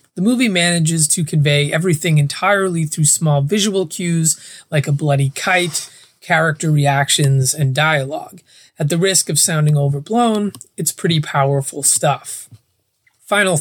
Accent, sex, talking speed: American, male, 130 wpm